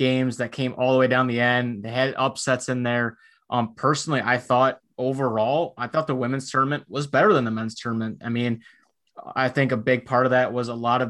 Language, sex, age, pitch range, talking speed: English, male, 20-39, 120-135 Hz, 230 wpm